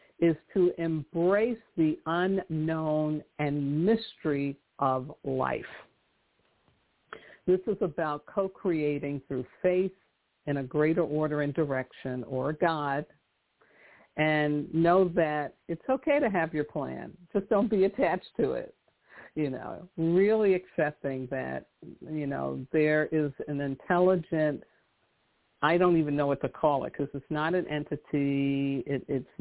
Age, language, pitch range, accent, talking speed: 50-69, English, 145-180 Hz, American, 130 wpm